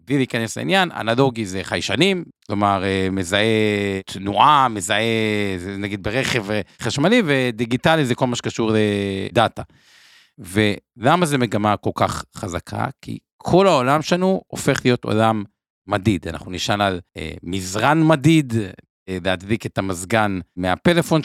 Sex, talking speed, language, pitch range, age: male, 125 wpm, Hebrew, 100-135 Hz, 50-69